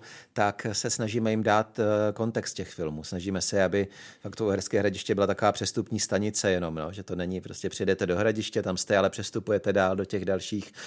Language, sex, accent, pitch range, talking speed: Czech, male, native, 95-105 Hz, 195 wpm